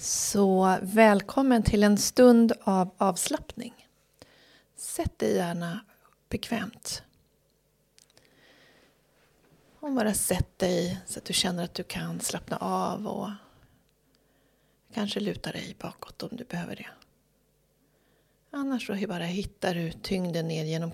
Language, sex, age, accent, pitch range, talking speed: Swedish, female, 30-49, native, 175-220 Hz, 120 wpm